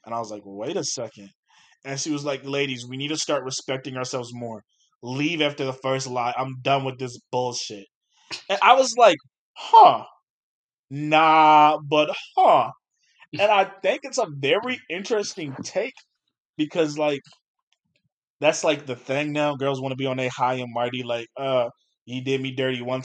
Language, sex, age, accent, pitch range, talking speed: English, male, 20-39, American, 130-170 Hz, 180 wpm